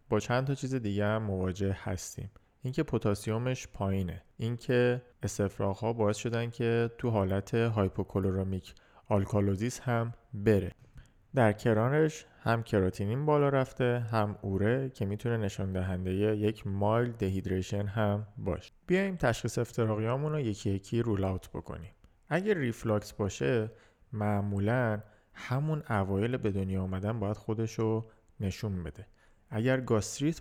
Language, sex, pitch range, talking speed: Persian, male, 100-125 Hz, 120 wpm